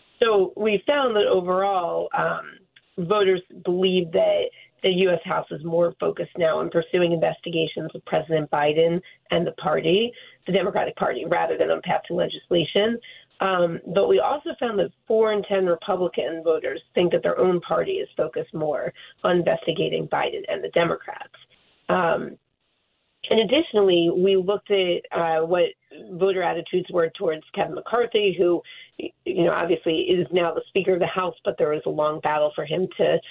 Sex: female